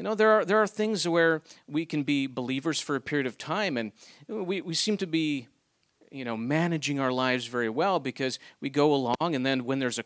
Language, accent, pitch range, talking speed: English, American, 130-170 Hz, 235 wpm